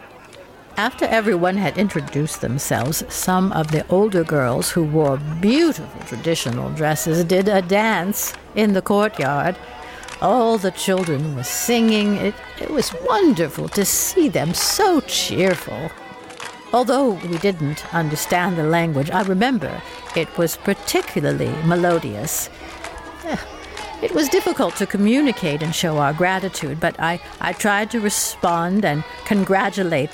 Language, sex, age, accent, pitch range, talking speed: English, female, 60-79, American, 155-205 Hz, 125 wpm